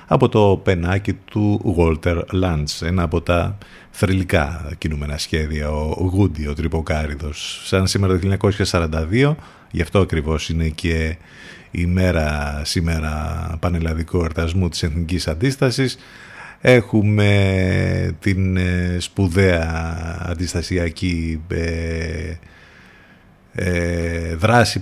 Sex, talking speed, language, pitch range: male, 95 wpm, Greek, 85-110 Hz